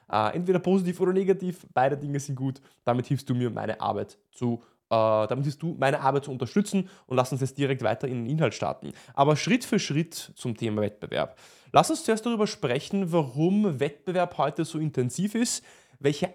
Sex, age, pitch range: male, 20-39, 135-180 Hz